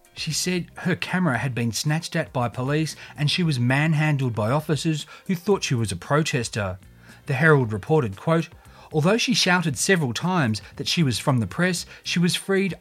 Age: 30-49